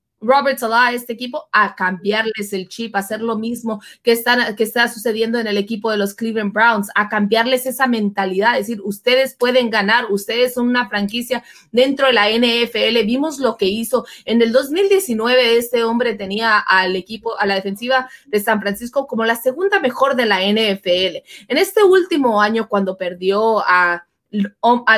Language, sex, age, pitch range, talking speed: Spanish, female, 20-39, 205-255 Hz, 180 wpm